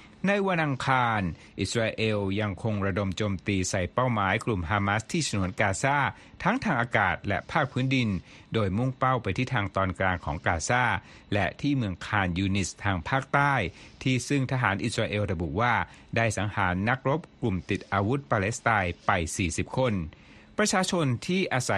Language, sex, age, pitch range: Thai, male, 60-79, 95-130 Hz